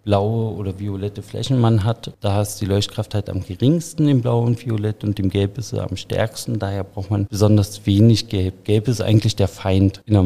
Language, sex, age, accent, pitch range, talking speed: German, male, 50-69, German, 105-125 Hz, 215 wpm